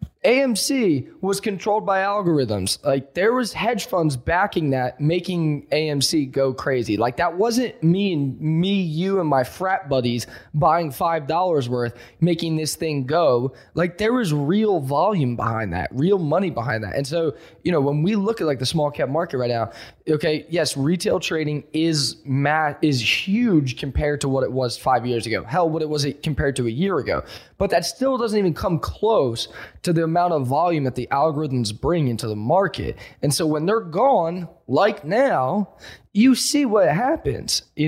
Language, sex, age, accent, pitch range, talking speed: English, male, 20-39, American, 140-200 Hz, 185 wpm